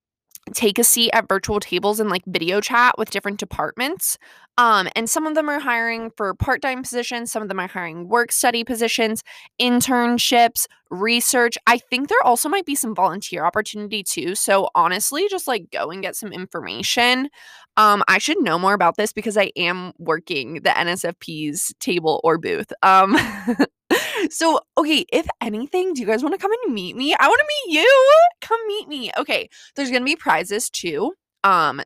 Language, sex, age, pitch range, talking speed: English, female, 20-39, 195-255 Hz, 185 wpm